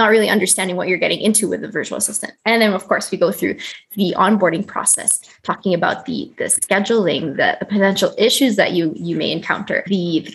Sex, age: female, 20-39